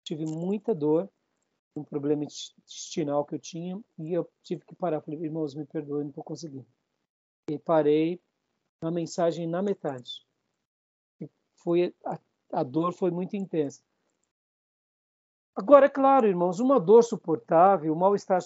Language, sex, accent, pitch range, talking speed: Portuguese, male, Brazilian, 155-210 Hz, 145 wpm